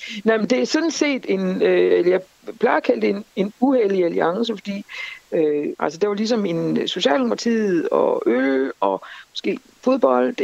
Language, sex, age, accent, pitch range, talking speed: Danish, female, 60-79, native, 195-265 Hz, 165 wpm